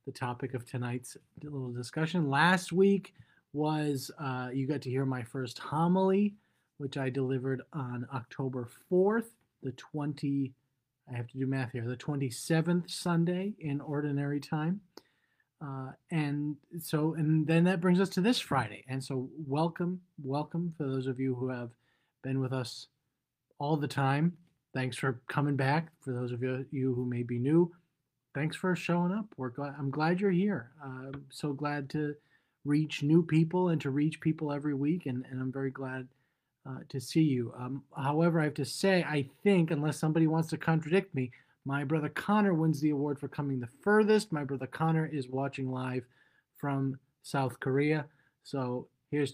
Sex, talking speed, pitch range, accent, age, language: male, 175 wpm, 130-160 Hz, American, 30-49, English